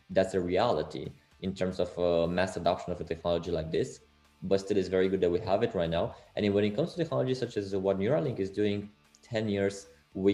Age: 20-39